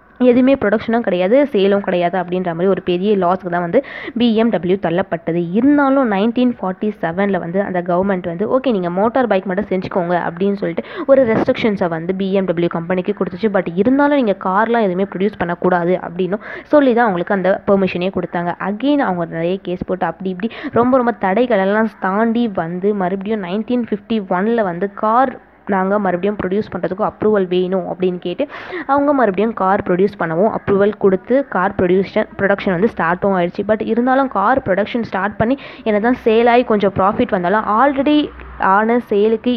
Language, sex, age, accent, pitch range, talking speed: Tamil, female, 20-39, native, 185-230 Hz, 155 wpm